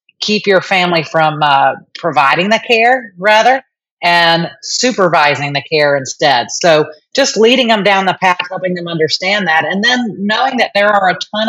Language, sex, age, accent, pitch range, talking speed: English, female, 40-59, American, 165-210 Hz, 170 wpm